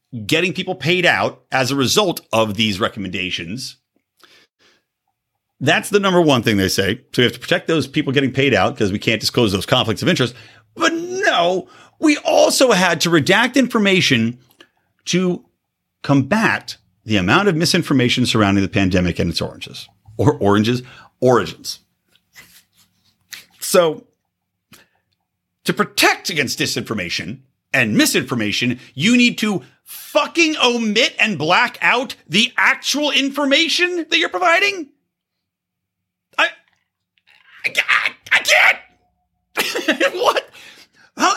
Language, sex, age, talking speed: English, male, 50-69, 125 wpm